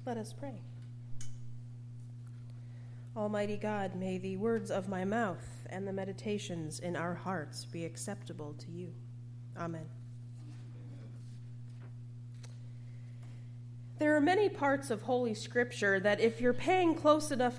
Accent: American